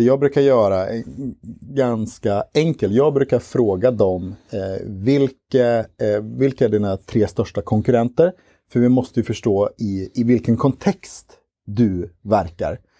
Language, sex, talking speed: Swedish, male, 140 wpm